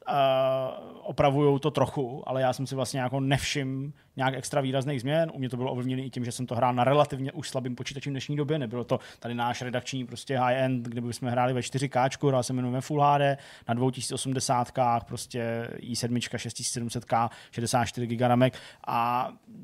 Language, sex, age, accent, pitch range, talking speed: Czech, male, 20-39, native, 130-145 Hz, 185 wpm